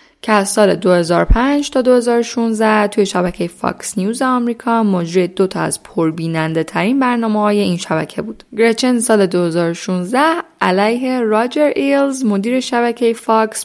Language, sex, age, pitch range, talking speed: Persian, female, 10-29, 175-230 Hz, 140 wpm